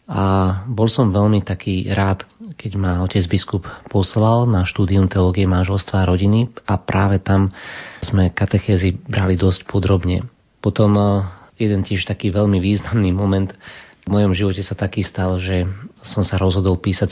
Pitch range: 95-105 Hz